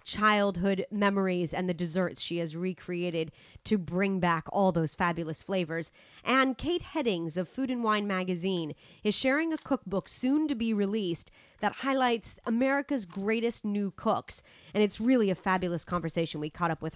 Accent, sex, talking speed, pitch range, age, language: American, female, 165 wpm, 180-230 Hz, 30-49, English